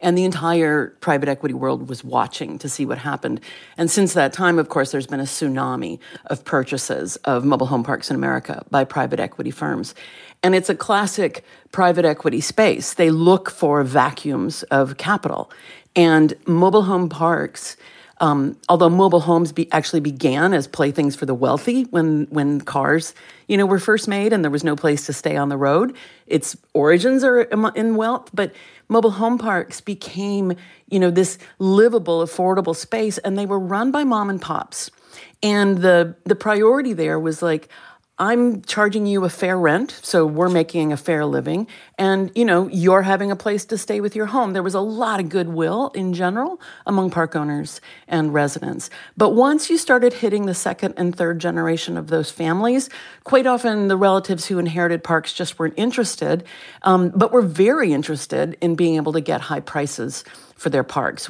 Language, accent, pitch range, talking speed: English, American, 160-205 Hz, 185 wpm